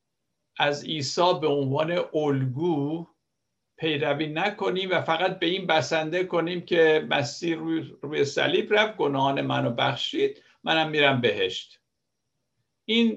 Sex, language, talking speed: male, Persian, 115 wpm